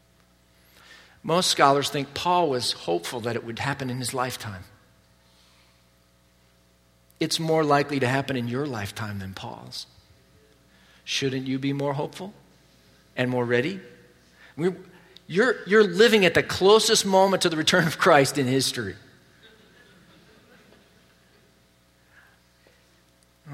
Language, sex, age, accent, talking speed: English, male, 50-69, American, 115 wpm